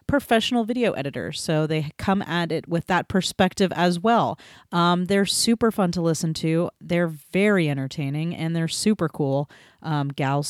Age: 30-49